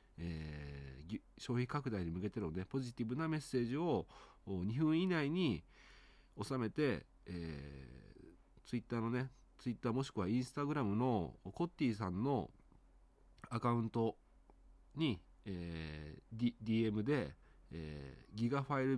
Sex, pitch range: male, 90-125 Hz